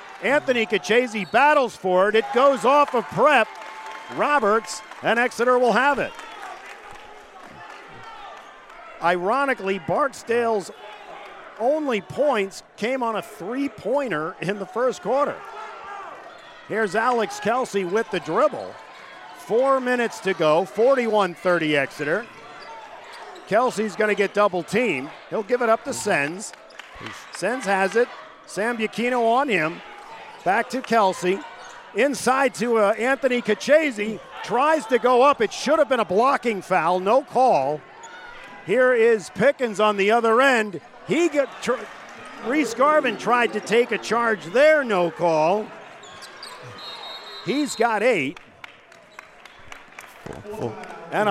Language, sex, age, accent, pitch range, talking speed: English, male, 50-69, American, 205-275 Hz, 120 wpm